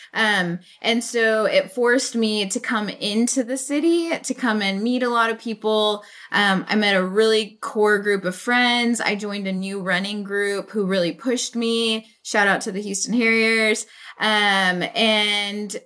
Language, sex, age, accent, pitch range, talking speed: English, female, 20-39, American, 190-235 Hz, 175 wpm